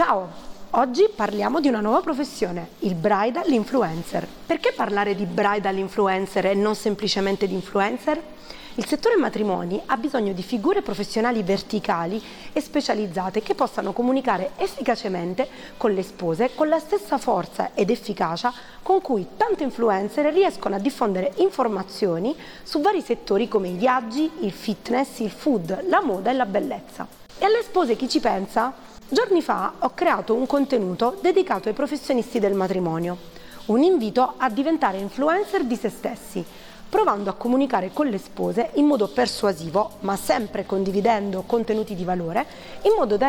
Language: Italian